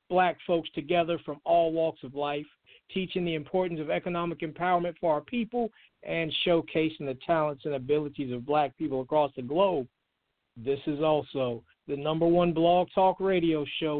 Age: 50-69